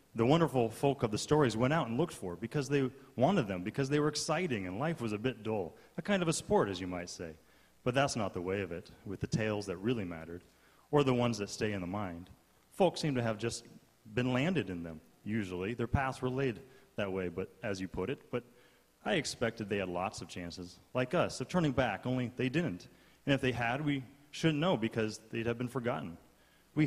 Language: English